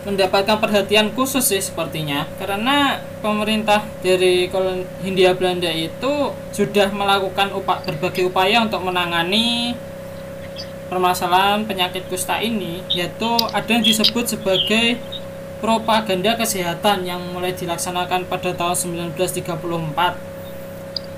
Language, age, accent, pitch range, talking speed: Indonesian, 20-39, native, 180-210 Hz, 100 wpm